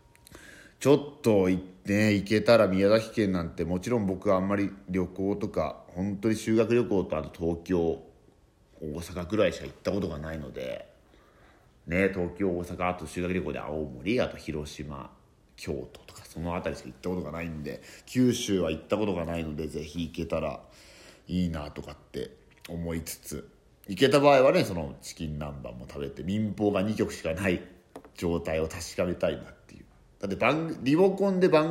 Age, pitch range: 40-59, 80-105 Hz